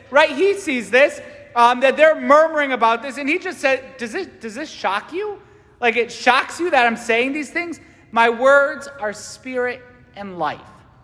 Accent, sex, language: American, male, English